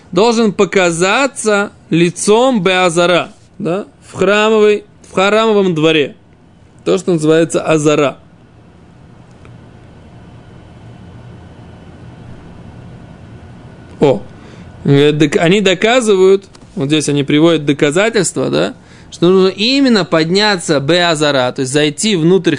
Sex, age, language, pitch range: male, 20-39, Russian, 140-185 Hz